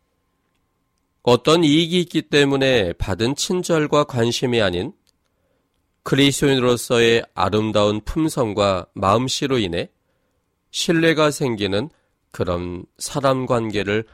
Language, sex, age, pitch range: Korean, male, 40-59, 90-140 Hz